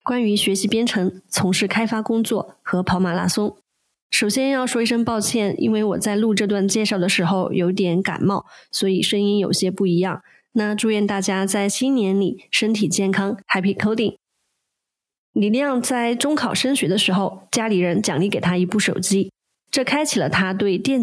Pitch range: 190-230 Hz